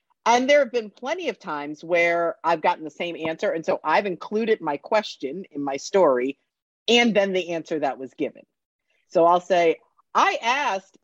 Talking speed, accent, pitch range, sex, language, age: 185 wpm, American, 160-210 Hz, female, English, 50-69